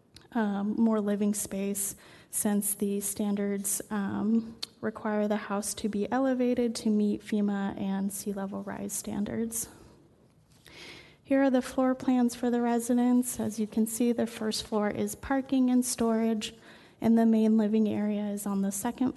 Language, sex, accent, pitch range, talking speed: English, female, American, 210-245 Hz, 155 wpm